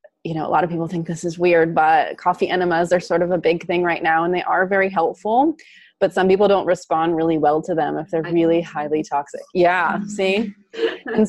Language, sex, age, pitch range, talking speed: English, female, 20-39, 155-185 Hz, 230 wpm